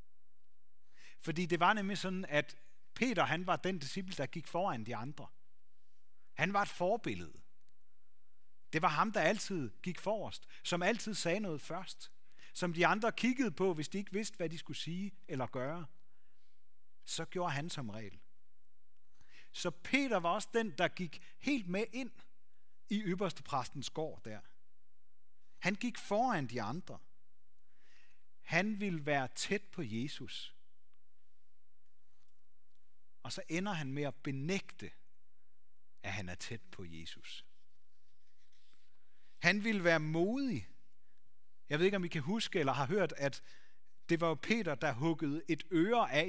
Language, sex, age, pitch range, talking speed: Danish, male, 40-59, 135-195 Hz, 150 wpm